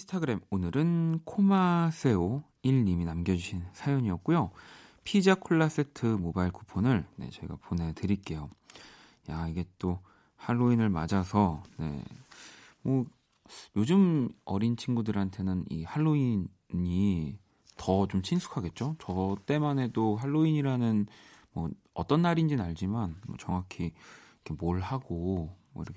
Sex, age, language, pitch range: male, 30-49, Korean, 90-130 Hz